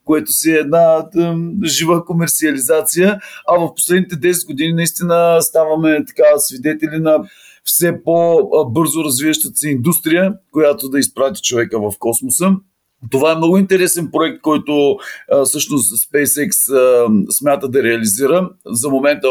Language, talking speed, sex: Bulgarian, 135 wpm, male